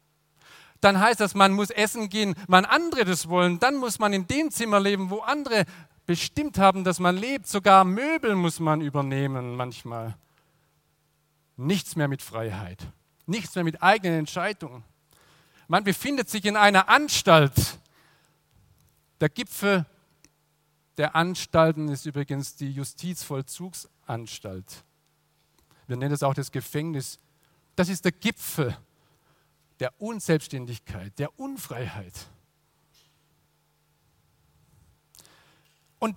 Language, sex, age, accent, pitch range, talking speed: German, male, 50-69, German, 150-205 Hz, 115 wpm